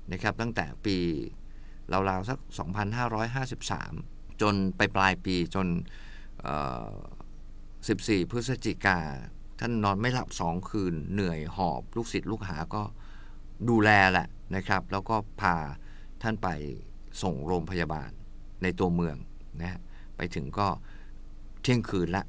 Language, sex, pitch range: Thai, male, 90-110 Hz